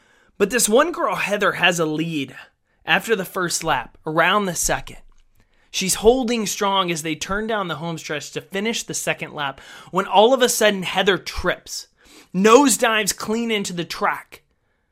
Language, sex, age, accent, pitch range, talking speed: English, male, 20-39, American, 155-200 Hz, 175 wpm